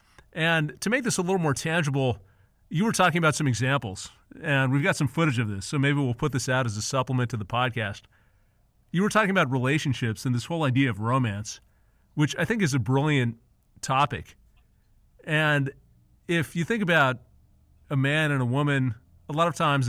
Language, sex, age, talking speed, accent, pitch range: English, male, 30-49, 195 wpm, American, 120-155 Hz